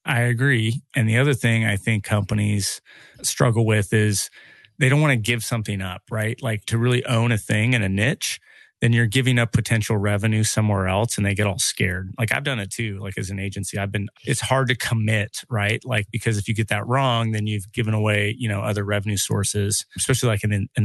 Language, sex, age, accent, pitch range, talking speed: English, male, 30-49, American, 105-120 Hz, 225 wpm